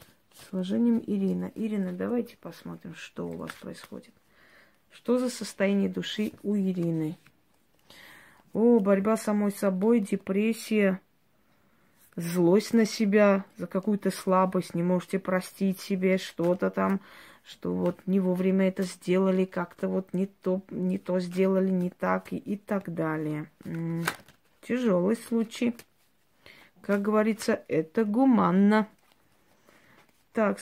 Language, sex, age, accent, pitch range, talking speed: Russian, female, 20-39, native, 180-210 Hz, 115 wpm